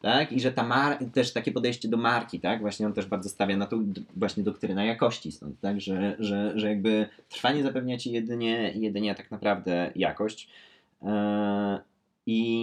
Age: 20-39